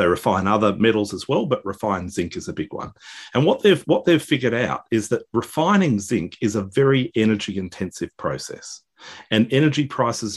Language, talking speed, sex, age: English, 190 wpm, male, 40-59